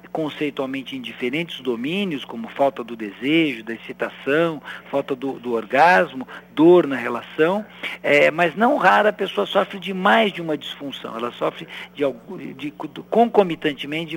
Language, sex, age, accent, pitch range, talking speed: Portuguese, male, 60-79, Brazilian, 135-180 Hz, 150 wpm